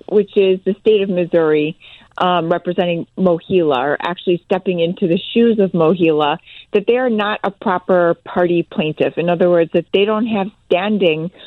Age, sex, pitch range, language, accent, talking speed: 40-59, female, 185-240 Hz, English, American, 175 wpm